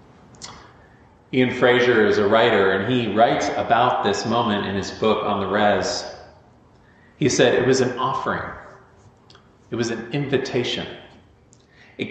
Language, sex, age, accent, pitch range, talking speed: English, male, 40-59, American, 100-130 Hz, 140 wpm